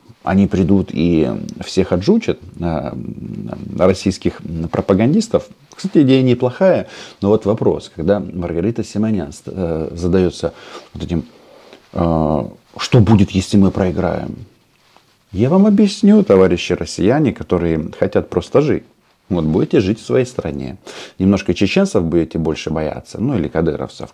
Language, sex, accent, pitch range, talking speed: Russian, male, native, 85-110 Hz, 115 wpm